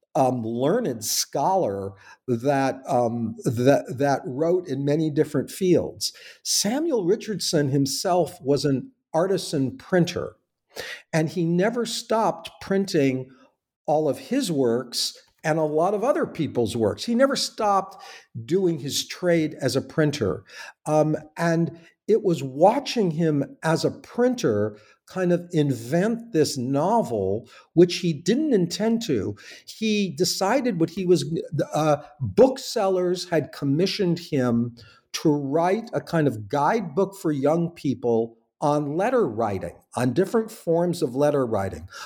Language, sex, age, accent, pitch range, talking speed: English, male, 50-69, American, 140-185 Hz, 125 wpm